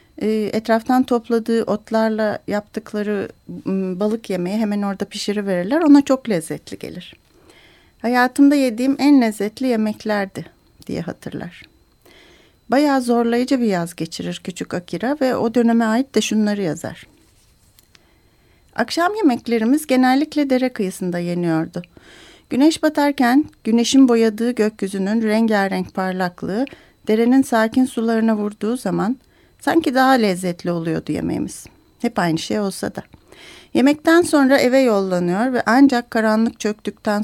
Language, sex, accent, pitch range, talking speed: Turkish, female, native, 200-255 Hz, 115 wpm